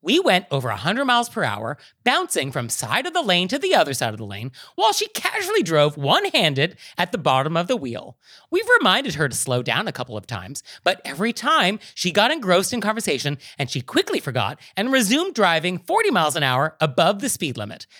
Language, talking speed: English, 215 wpm